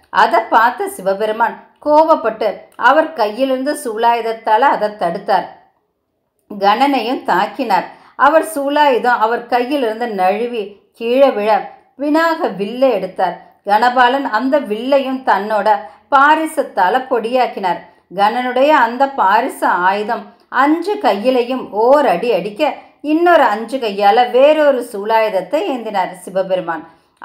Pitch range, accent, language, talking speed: 210-275 Hz, native, Tamil, 95 wpm